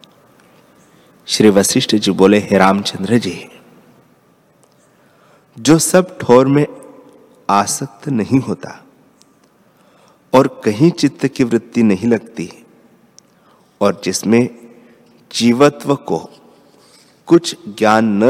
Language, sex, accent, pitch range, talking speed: Hindi, male, native, 105-135 Hz, 90 wpm